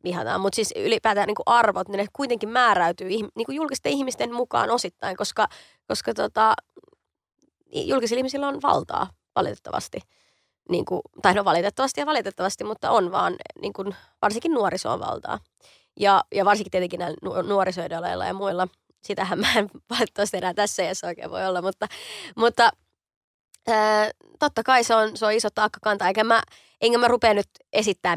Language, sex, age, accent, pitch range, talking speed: Finnish, female, 20-39, native, 200-255 Hz, 160 wpm